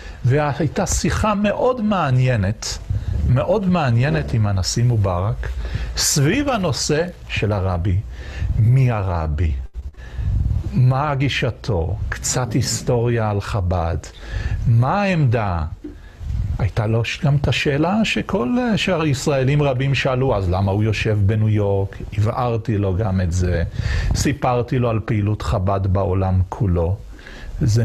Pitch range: 95-130 Hz